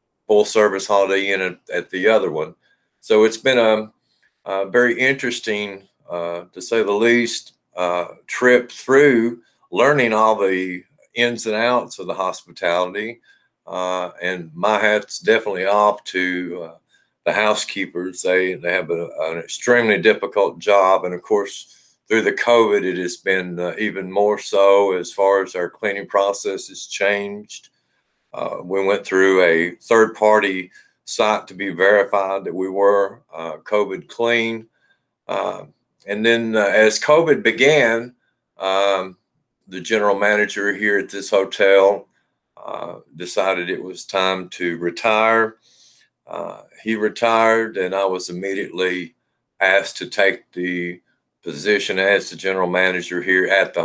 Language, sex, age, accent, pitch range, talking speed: English, male, 50-69, American, 90-110 Hz, 145 wpm